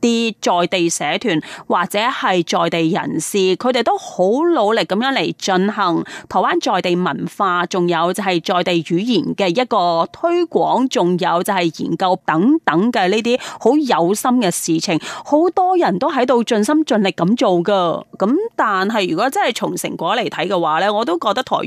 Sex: female